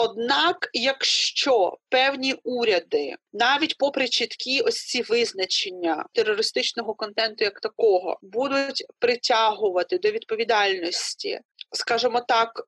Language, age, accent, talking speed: Ukrainian, 30-49, native, 95 wpm